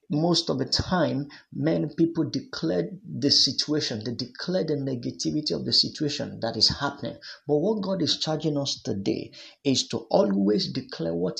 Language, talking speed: English, 165 wpm